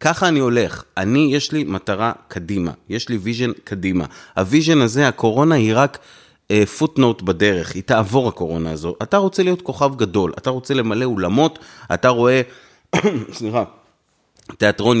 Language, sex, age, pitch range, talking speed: Hebrew, male, 30-49, 110-155 Hz, 150 wpm